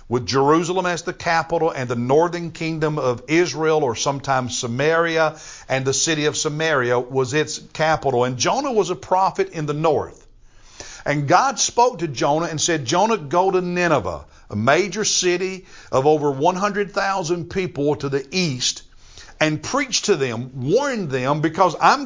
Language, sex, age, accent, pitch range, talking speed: English, male, 60-79, American, 150-195 Hz, 160 wpm